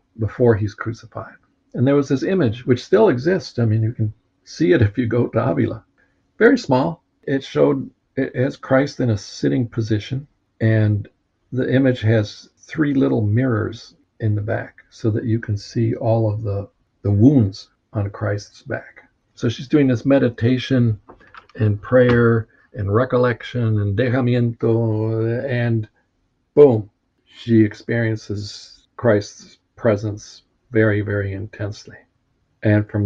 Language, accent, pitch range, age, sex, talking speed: English, American, 105-120 Hz, 50-69, male, 140 wpm